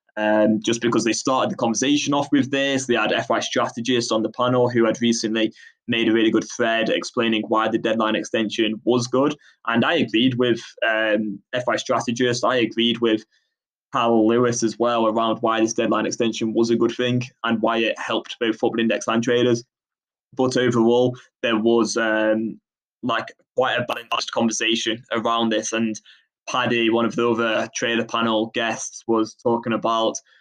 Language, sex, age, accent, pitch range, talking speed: English, male, 20-39, British, 110-120 Hz, 175 wpm